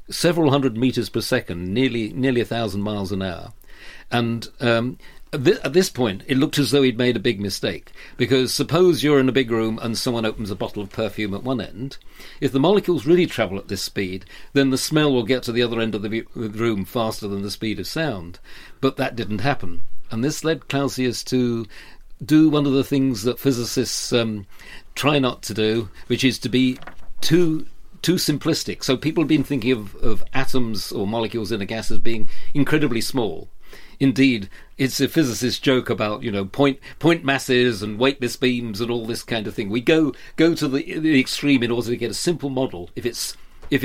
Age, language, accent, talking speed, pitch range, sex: 50-69, English, British, 205 wpm, 105-135 Hz, male